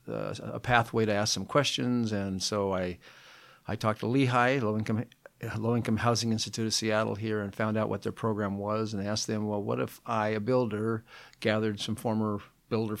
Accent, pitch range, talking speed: American, 100-120 Hz, 195 wpm